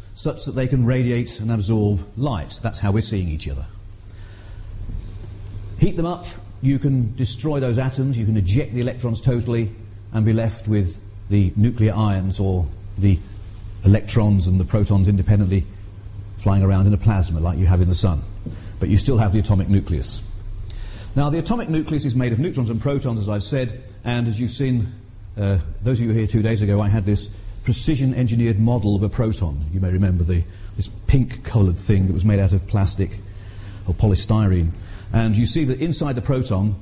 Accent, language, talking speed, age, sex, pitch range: British, English, 185 wpm, 40-59, male, 100-120 Hz